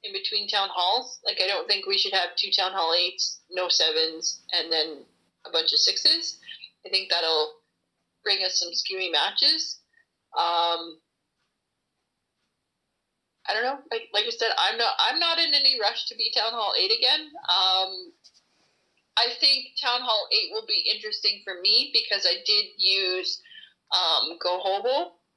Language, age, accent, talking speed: English, 30-49, American, 165 wpm